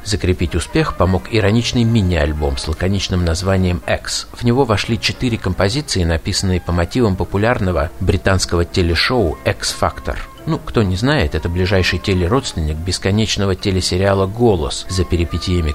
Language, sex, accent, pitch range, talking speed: Russian, male, native, 90-110 Hz, 130 wpm